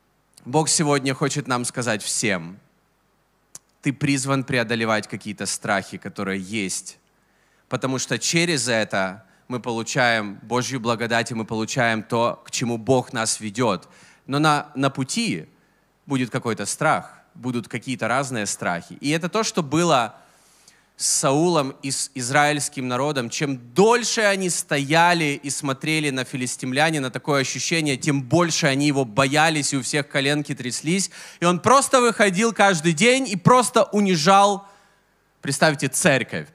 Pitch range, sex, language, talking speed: 125-175 Hz, male, Russian, 135 wpm